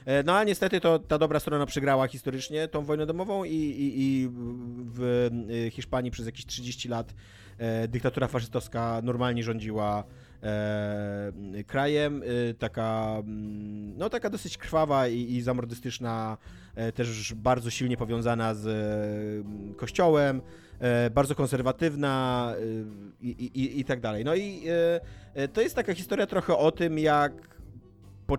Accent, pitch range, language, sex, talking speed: native, 120-155 Hz, Polish, male, 120 wpm